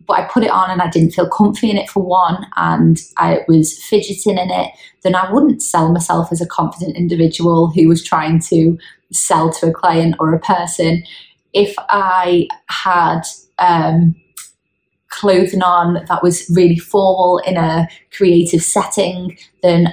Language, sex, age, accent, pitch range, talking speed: English, female, 20-39, British, 165-190 Hz, 165 wpm